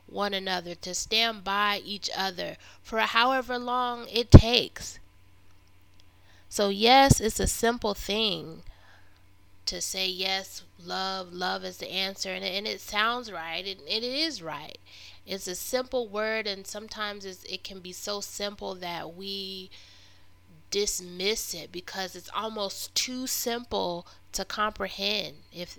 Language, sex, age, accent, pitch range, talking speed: English, female, 20-39, American, 165-215 Hz, 140 wpm